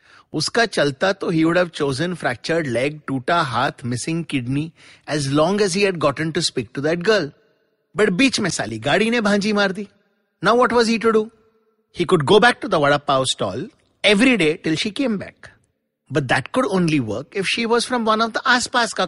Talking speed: 200 wpm